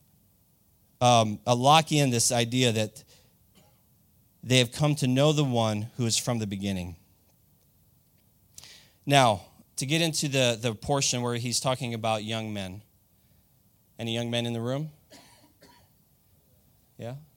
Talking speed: 135 wpm